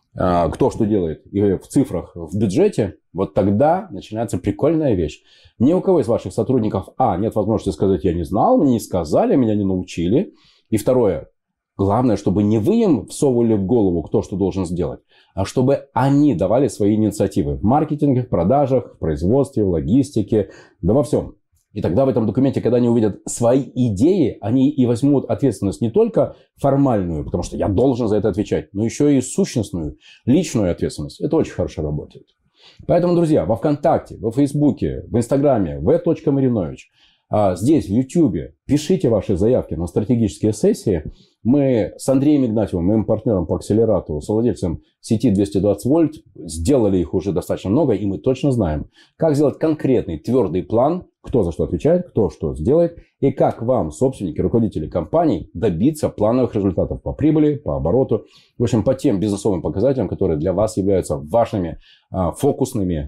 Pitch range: 95-135 Hz